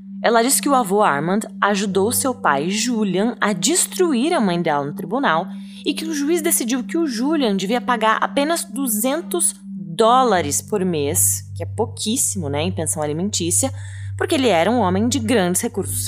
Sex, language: female, Portuguese